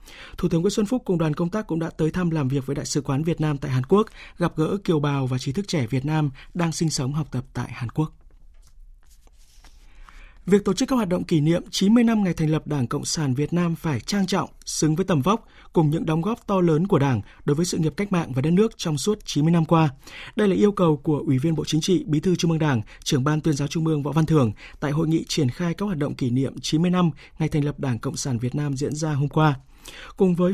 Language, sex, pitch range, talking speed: Vietnamese, male, 135-180 Hz, 275 wpm